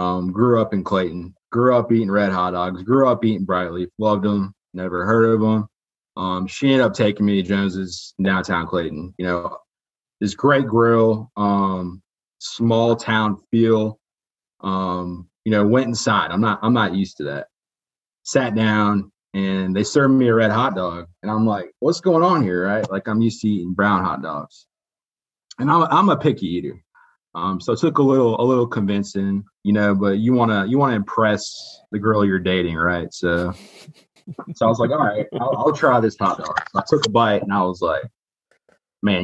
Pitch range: 95-115 Hz